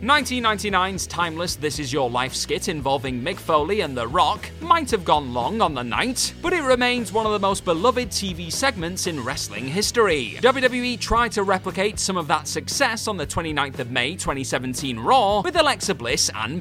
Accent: British